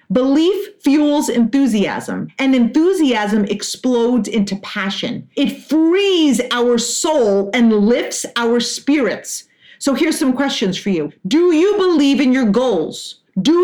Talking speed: 130 wpm